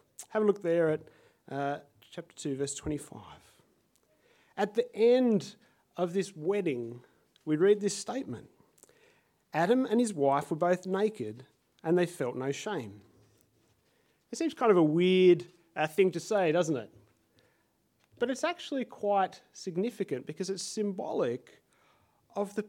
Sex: male